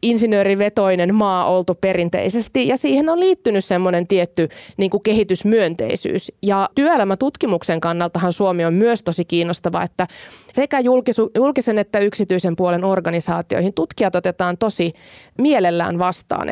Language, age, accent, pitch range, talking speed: Finnish, 30-49, native, 180-210 Hz, 115 wpm